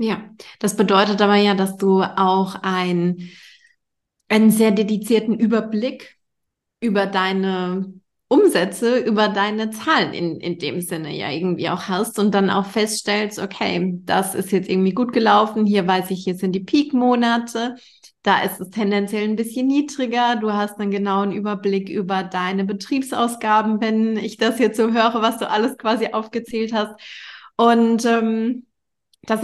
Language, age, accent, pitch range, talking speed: German, 30-49, German, 190-230 Hz, 150 wpm